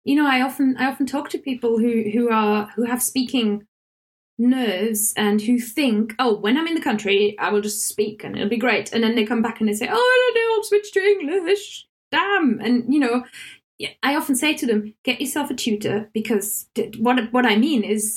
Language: English